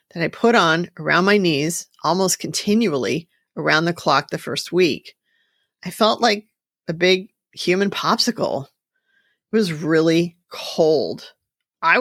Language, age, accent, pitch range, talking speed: English, 40-59, American, 170-225 Hz, 135 wpm